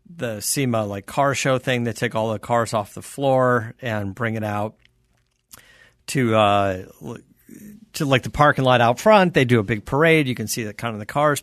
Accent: American